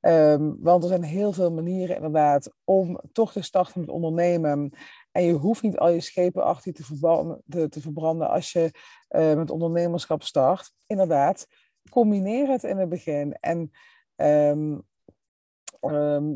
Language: Dutch